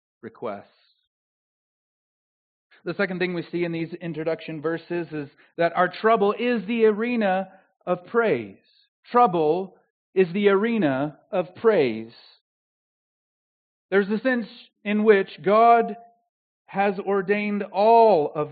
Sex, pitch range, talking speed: male, 170-225 Hz, 115 wpm